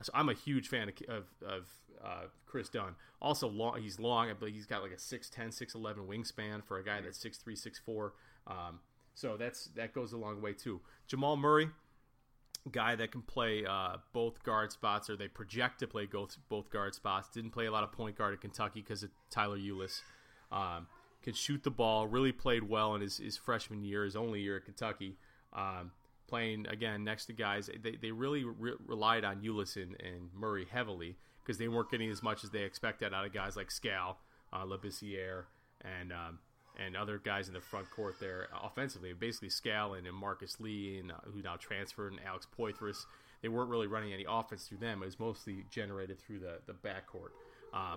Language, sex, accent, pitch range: English, male, American, 100-115 Hz